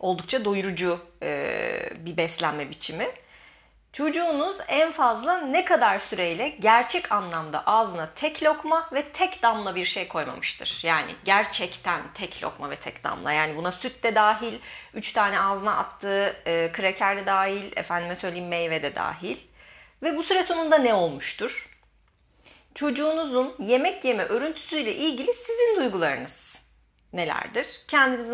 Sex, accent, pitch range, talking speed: female, native, 180-300 Hz, 130 wpm